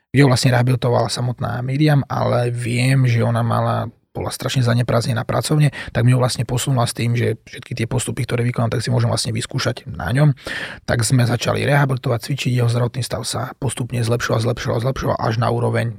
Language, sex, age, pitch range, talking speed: Slovak, male, 30-49, 115-130 Hz, 195 wpm